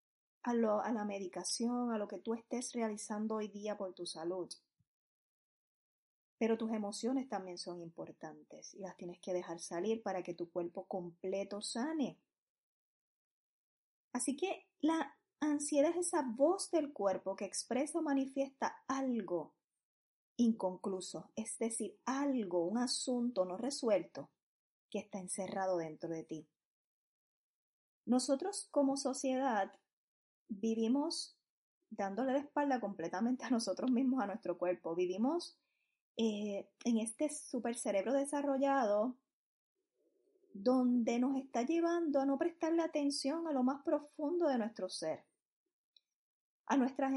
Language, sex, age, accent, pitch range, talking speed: Spanish, female, 20-39, American, 205-280 Hz, 125 wpm